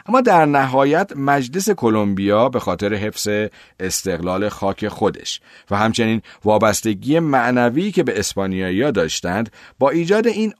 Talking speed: 125 wpm